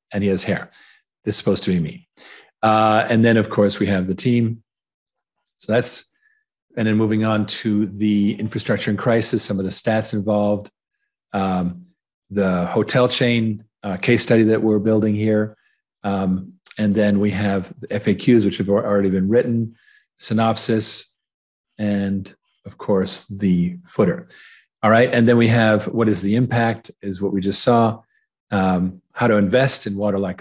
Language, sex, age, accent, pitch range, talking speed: English, male, 40-59, American, 100-115 Hz, 170 wpm